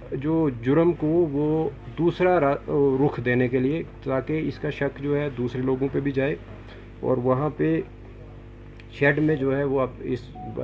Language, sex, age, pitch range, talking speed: Urdu, male, 50-69, 115-145 Hz, 165 wpm